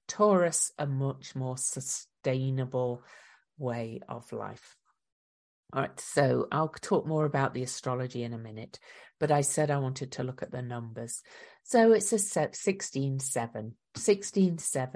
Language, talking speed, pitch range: English, 150 wpm, 130-165 Hz